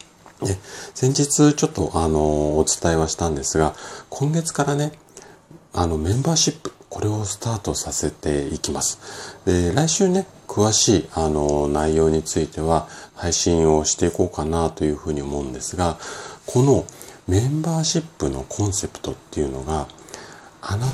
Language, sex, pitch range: Japanese, male, 80-120 Hz